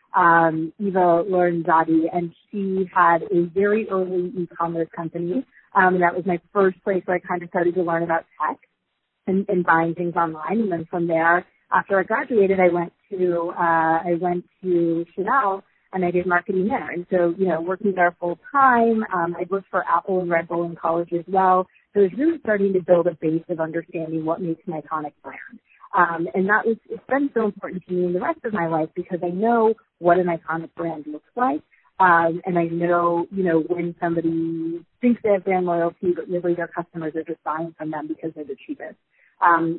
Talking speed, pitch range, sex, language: 210 wpm, 165-190 Hz, female, English